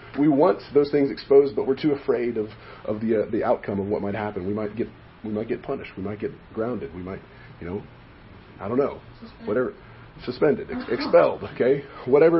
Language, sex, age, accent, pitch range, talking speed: English, male, 40-59, American, 105-135 Hz, 210 wpm